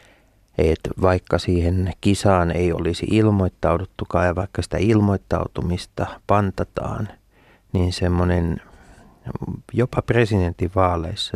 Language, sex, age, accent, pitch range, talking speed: Finnish, male, 30-49, native, 90-110 Hz, 85 wpm